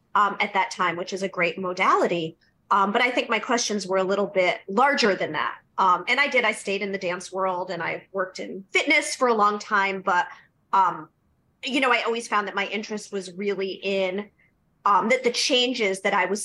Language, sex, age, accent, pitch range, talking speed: English, female, 30-49, American, 190-245 Hz, 225 wpm